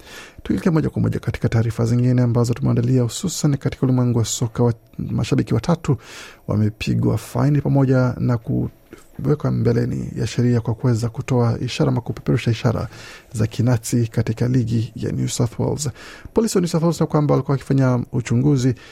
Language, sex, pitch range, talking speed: Swahili, male, 115-135 Hz, 155 wpm